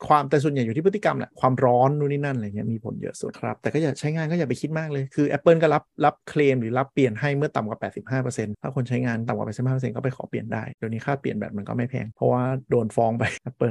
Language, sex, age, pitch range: Thai, male, 30-49, 120-145 Hz